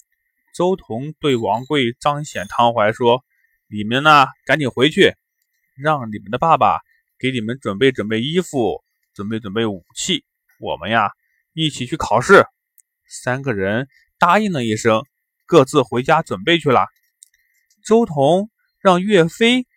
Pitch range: 120-190 Hz